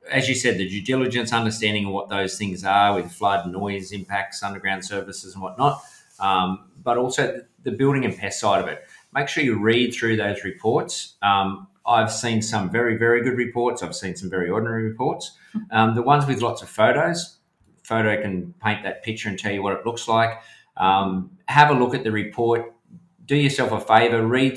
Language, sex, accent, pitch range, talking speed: English, male, Australian, 100-125 Hz, 200 wpm